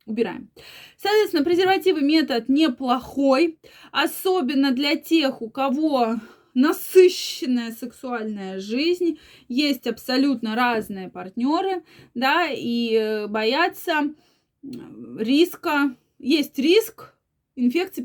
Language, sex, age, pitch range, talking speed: Russian, female, 20-39, 240-315 Hz, 80 wpm